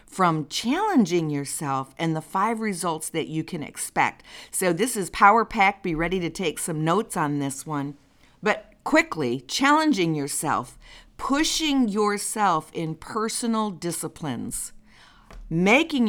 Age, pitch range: 50-69, 155-215 Hz